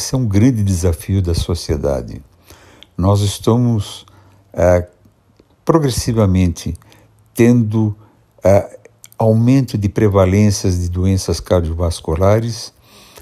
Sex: male